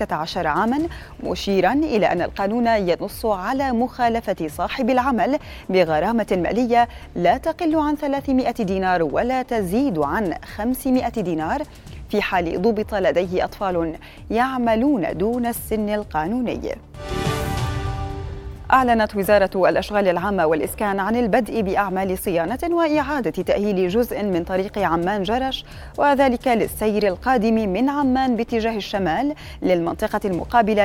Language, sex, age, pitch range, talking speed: Arabic, female, 20-39, 190-255 Hz, 110 wpm